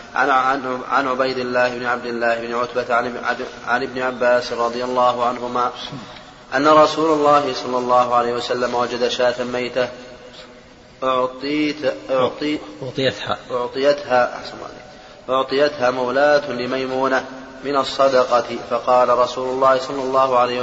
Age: 20-39